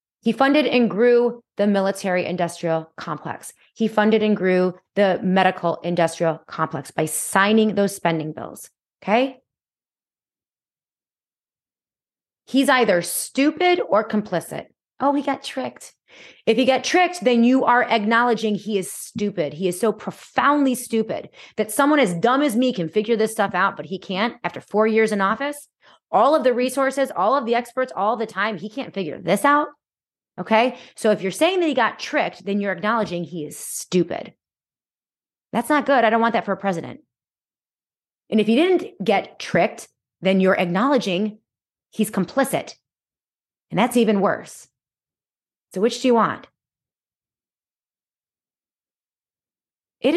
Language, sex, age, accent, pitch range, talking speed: English, female, 30-49, American, 185-250 Hz, 150 wpm